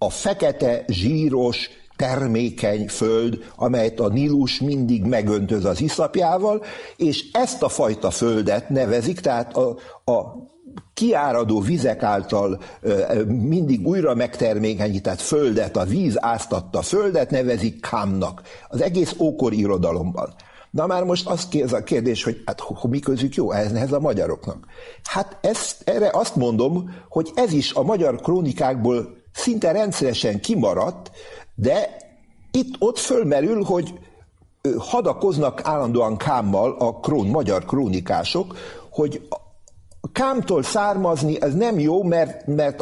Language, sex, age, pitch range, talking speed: English, male, 60-79, 115-180 Hz, 125 wpm